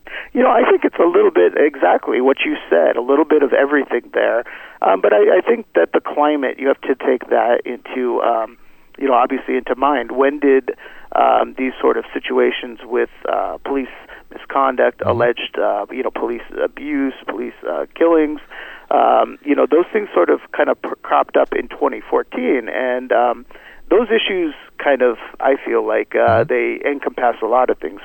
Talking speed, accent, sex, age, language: 185 wpm, American, male, 40-59, English